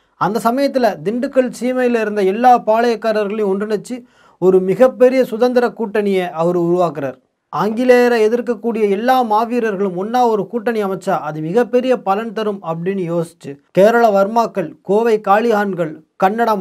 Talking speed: 120 wpm